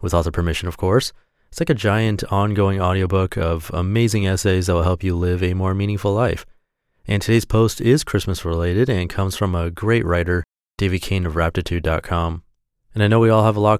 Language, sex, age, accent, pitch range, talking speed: English, male, 30-49, American, 90-110 Hz, 205 wpm